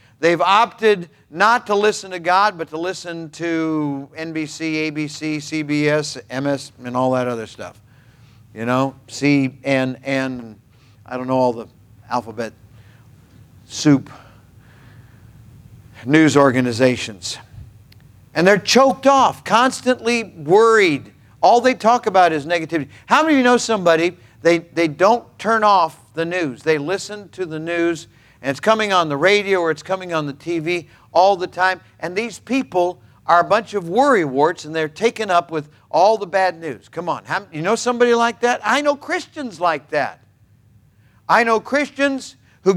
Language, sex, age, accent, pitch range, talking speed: English, male, 50-69, American, 130-210 Hz, 155 wpm